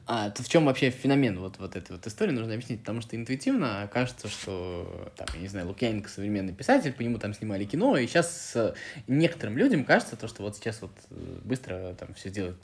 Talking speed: 210 wpm